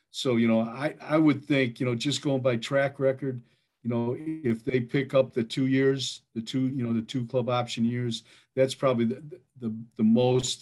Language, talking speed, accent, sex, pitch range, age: English, 215 wpm, American, male, 110-130 Hz, 50-69